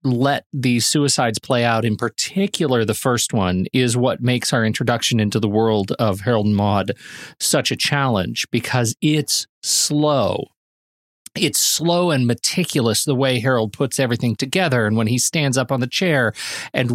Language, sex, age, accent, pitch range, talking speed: English, male, 40-59, American, 115-150 Hz, 165 wpm